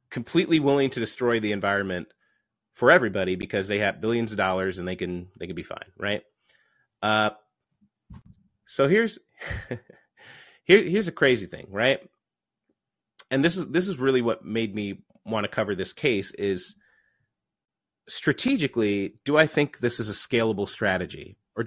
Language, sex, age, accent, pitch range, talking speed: English, male, 30-49, American, 105-145 Hz, 155 wpm